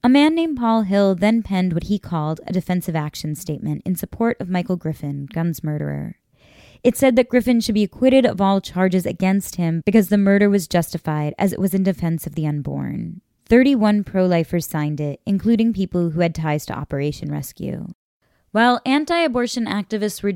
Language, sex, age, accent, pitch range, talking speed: English, female, 10-29, American, 165-210 Hz, 185 wpm